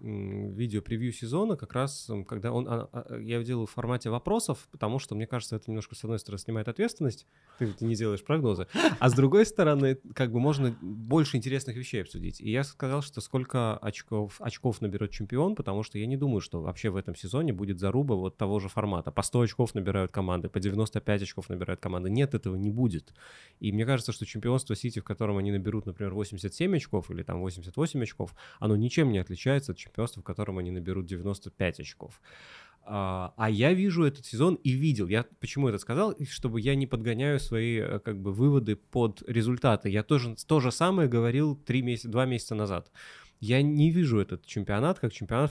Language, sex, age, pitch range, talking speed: Russian, male, 20-39, 100-130 Hz, 195 wpm